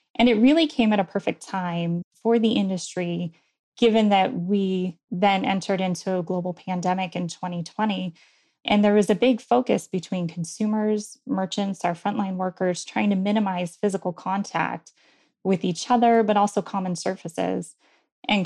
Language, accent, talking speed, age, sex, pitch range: English, American, 155 wpm, 20-39, female, 180-215 Hz